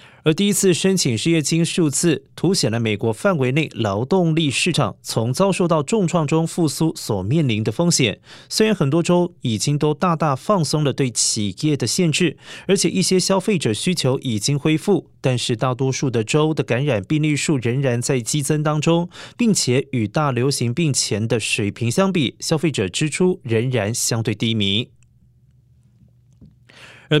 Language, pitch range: Chinese, 120-160 Hz